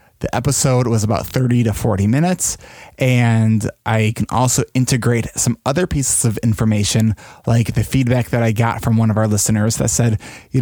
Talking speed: 180 wpm